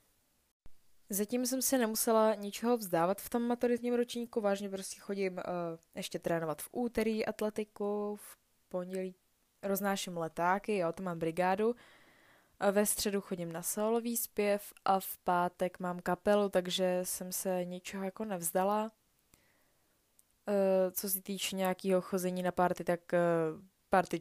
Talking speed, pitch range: 140 wpm, 180-210 Hz